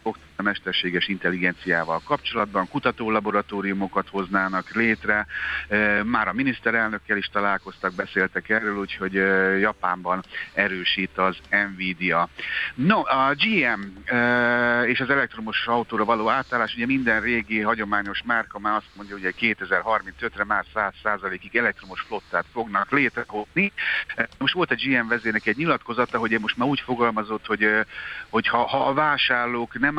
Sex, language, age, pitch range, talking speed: male, Hungarian, 60-79, 95-120 Hz, 130 wpm